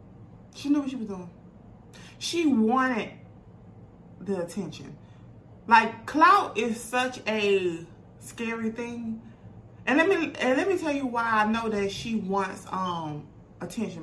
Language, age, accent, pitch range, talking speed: English, 20-39, American, 190-245 Hz, 140 wpm